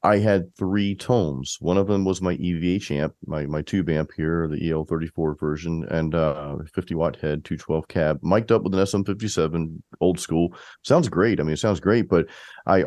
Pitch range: 80-100 Hz